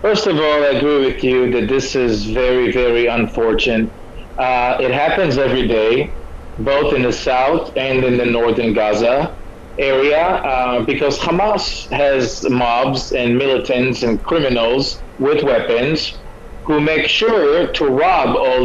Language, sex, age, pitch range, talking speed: English, male, 30-49, 125-170 Hz, 145 wpm